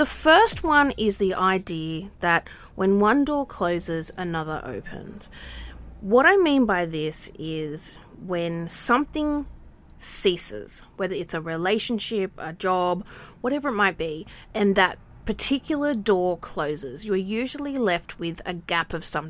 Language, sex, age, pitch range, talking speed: English, female, 30-49, 170-225 Hz, 140 wpm